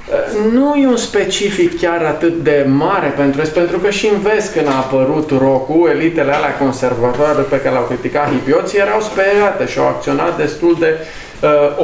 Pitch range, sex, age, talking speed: 145-195 Hz, male, 20-39, 170 wpm